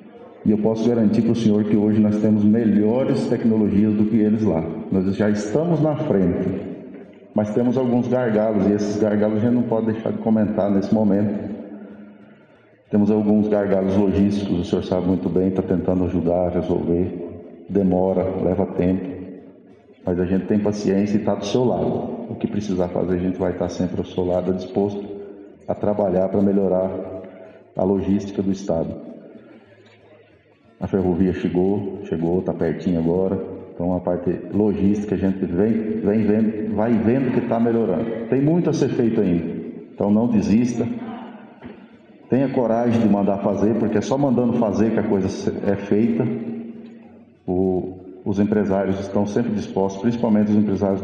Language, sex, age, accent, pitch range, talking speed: Portuguese, male, 50-69, Brazilian, 95-110 Hz, 165 wpm